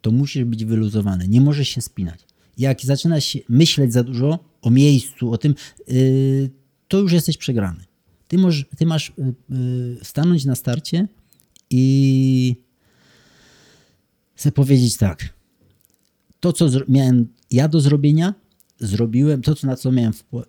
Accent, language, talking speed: native, Polish, 125 wpm